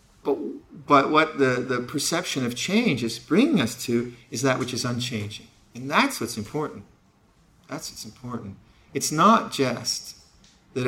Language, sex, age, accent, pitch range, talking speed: English, male, 50-69, American, 115-135 Hz, 150 wpm